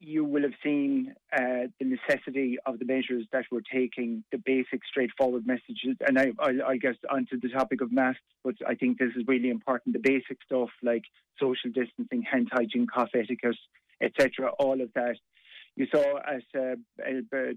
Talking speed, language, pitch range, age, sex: 180 wpm, English, 120-135 Hz, 30-49, male